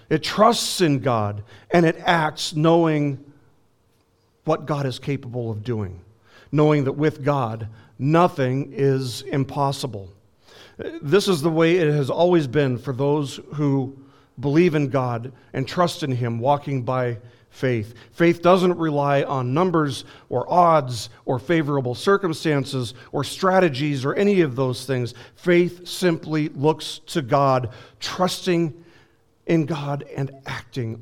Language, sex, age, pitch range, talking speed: English, male, 50-69, 115-155 Hz, 135 wpm